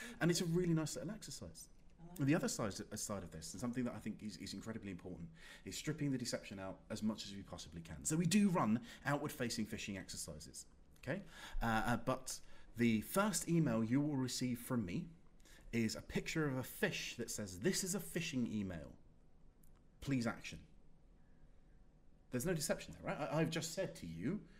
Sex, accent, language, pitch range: male, British, English, 105-170 Hz